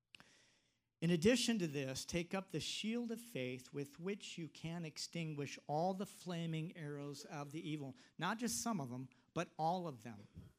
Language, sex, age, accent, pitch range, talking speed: English, male, 50-69, American, 150-195 Hz, 175 wpm